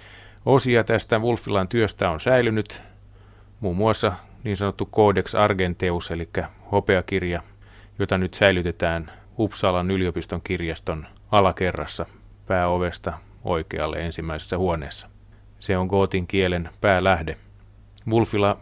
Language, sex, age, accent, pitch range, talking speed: Finnish, male, 30-49, native, 90-100 Hz, 100 wpm